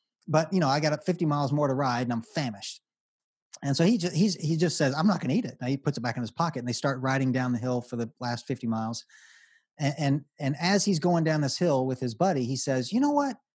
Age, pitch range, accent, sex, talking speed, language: 30-49, 125-165 Hz, American, male, 280 wpm, English